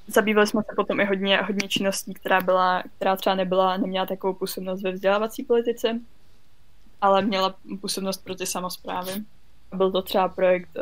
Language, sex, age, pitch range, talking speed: Czech, female, 20-39, 185-200 Hz, 160 wpm